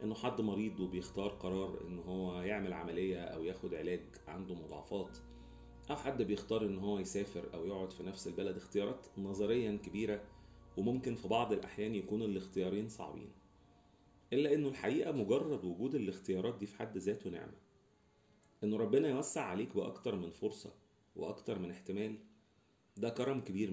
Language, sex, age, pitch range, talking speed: Arabic, male, 40-59, 95-120 Hz, 150 wpm